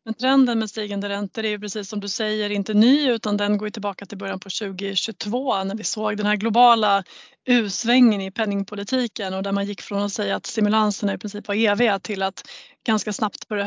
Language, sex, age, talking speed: Swedish, female, 30-49, 215 wpm